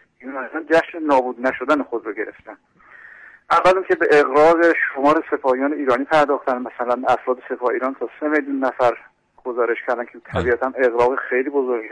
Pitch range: 130-150 Hz